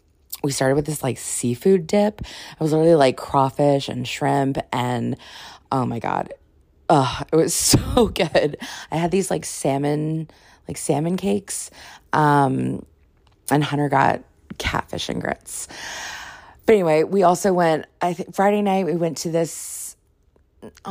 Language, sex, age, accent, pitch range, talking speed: English, female, 20-39, American, 130-160 Hz, 150 wpm